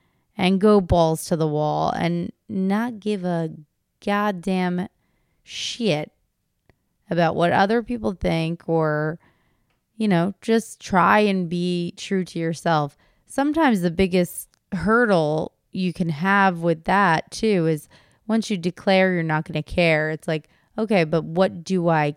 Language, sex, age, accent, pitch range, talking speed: English, female, 20-39, American, 160-190 Hz, 145 wpm